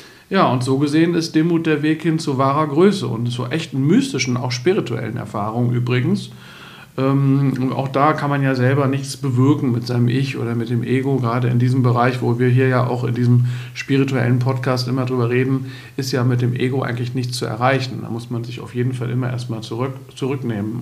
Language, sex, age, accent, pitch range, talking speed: German, male, 50-69, German, 120-145 Hz, 210 wpm